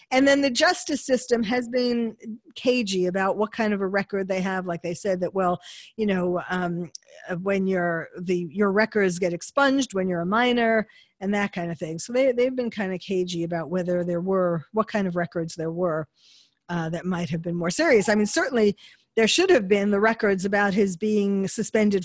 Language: English